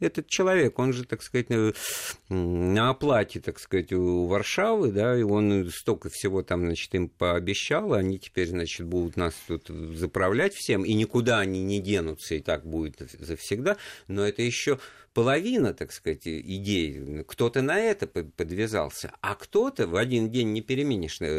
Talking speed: 160 wpm